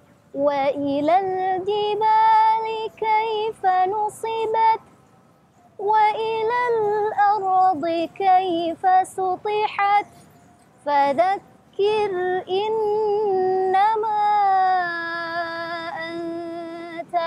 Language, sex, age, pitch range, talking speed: Indonesian, male, 20-39, 330-415 Hz, 40 wpm